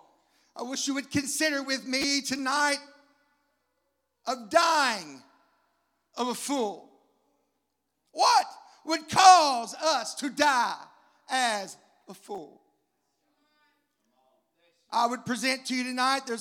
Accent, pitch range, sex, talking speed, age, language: American, 255-300 Hz, male, 105 wpm, 40-59, English